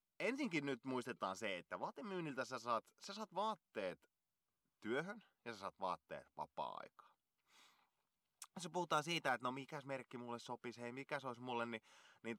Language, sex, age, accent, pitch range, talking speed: Finnish, male, 20-39, native, 100-145 Hz, 150 wpm